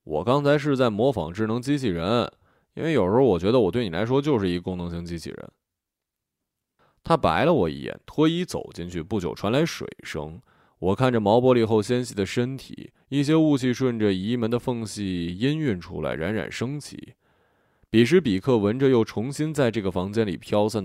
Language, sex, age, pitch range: Chinese, male, 20-39, 95-135 Hz